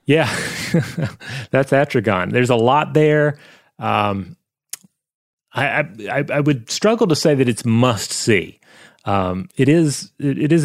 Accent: American